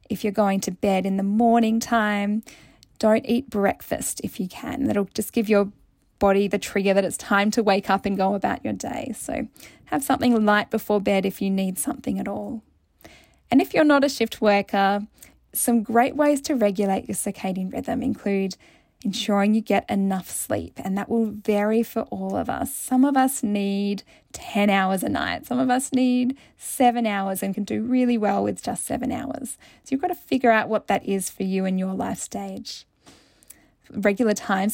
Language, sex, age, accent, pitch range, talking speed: English, female, 10-29, Australian, 195-235 Hz, 195 wpm